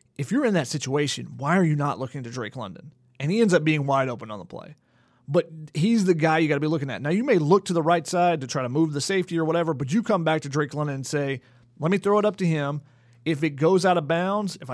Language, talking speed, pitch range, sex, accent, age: English, 295 wpm, 140-170 Hz, male, American, 30-49